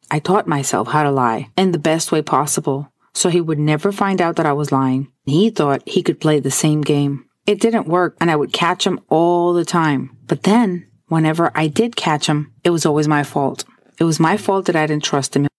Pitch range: 145-175 Hz